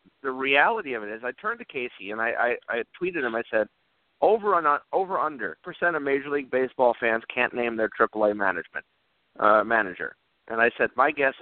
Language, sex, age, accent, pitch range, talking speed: English, male, 50-69, American, 110-145 Hz, 215 wpm